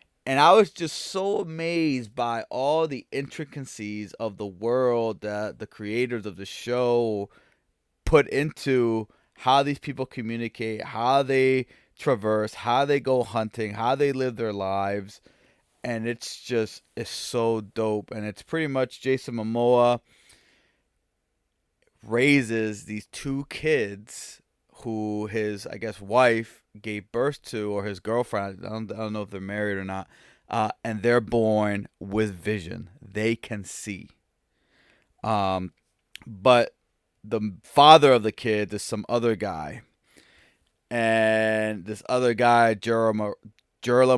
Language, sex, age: English, male, 20-39